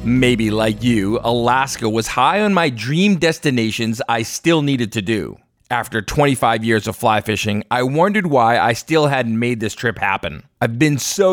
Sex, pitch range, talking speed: male, 115-170 Hz, 180 wpm